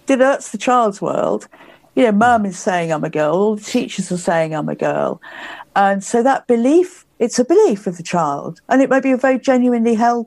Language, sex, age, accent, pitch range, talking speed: English, female, 50-69, British, 185-235 Hz, 220 wpm